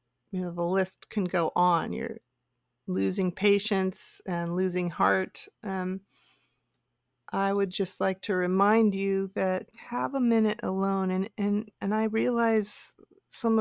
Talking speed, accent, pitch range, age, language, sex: 135 wpm, American, 185-210 Hz, 30-49, English, female